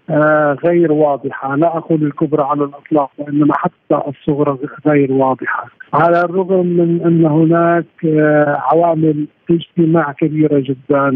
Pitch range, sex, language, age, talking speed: 145-170 Hz, male, Arabic, 50-69, 130 wpm